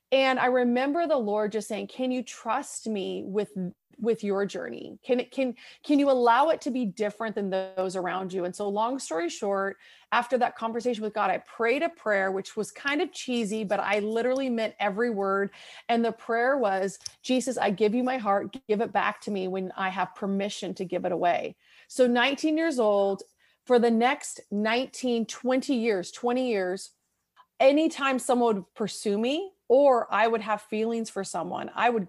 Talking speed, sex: 195 wpm, female